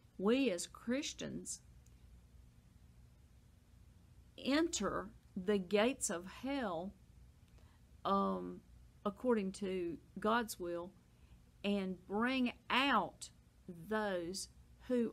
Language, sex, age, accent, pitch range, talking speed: English, female, 50-69, American, 175-215 Hz, 70 wpm